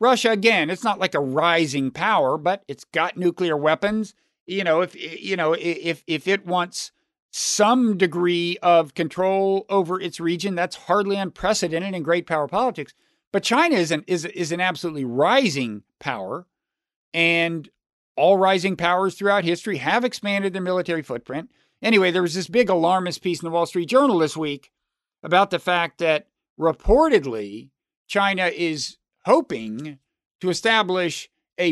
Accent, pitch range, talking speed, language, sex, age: American, 165-210 Hz, 155 wpm, English, male, 50-69